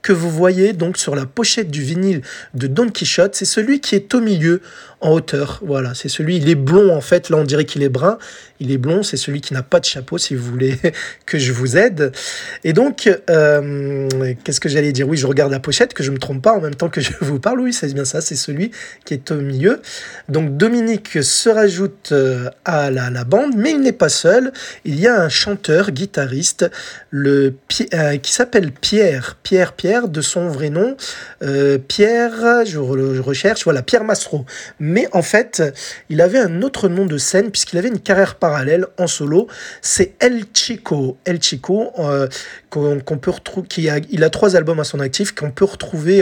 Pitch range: 140-200 Hz